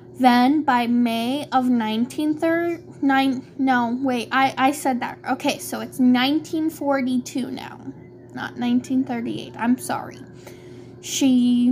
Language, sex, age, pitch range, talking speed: English, female, 10-29, 235-300 Hz, 120 wpm